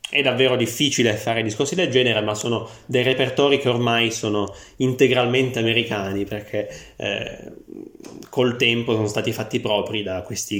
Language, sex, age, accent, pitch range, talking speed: Italian, male, 30-49, native, 110-140 Hz, 145 wpm